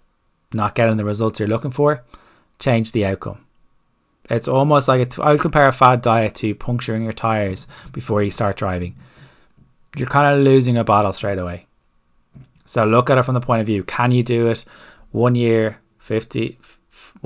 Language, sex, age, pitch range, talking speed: English, male, 20-39, 105-125 Hz, 180 wpm